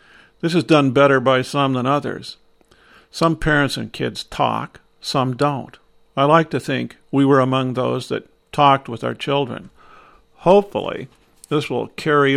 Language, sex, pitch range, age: English, male, 120-140 Hz, 50-69